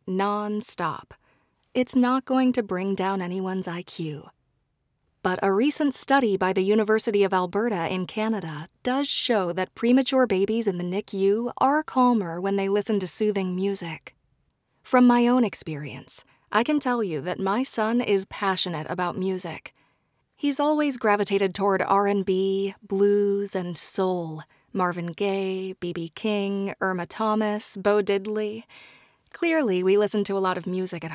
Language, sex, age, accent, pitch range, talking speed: English, female, 30-49, American, 185-235 Hz, 150 wpm